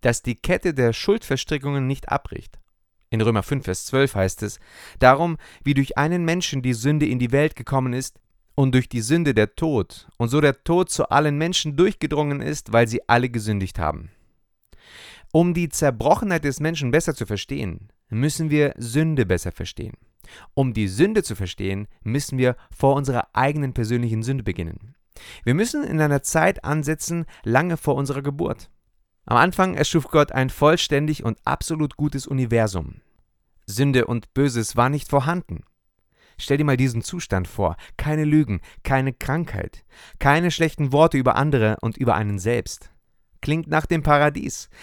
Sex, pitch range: male, 115-155 Hz